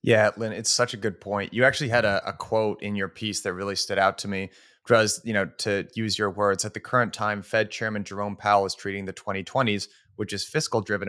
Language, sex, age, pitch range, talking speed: English, male, 30-49, 100-115 Hz, 240 wpm